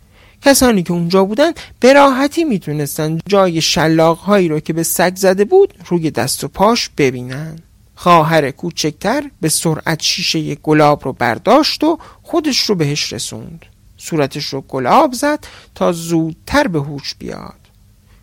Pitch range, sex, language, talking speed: 140-190 Hz, male, Persian, 140 wpm